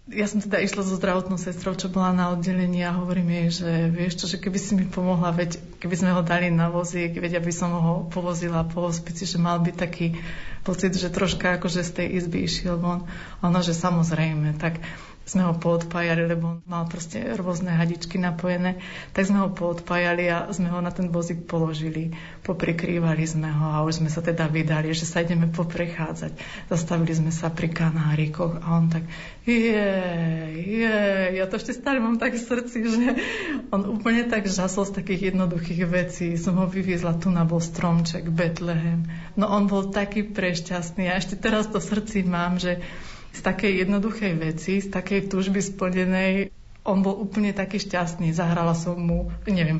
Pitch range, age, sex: 170-195 Hz, 30-49, female